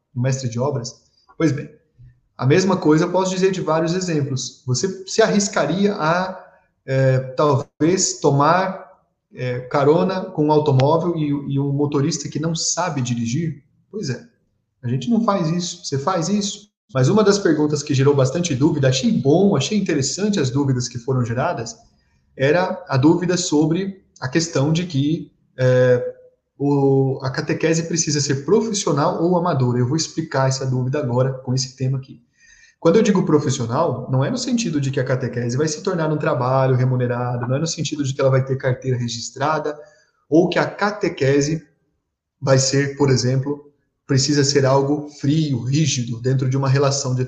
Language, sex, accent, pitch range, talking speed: Portuguese, male, Brazilian, 130-170 Hz, 165 wpm